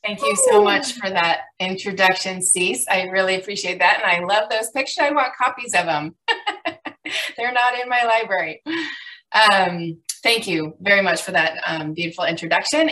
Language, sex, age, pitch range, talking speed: English, female, 20-39, 165-225 Hz, 170 wpm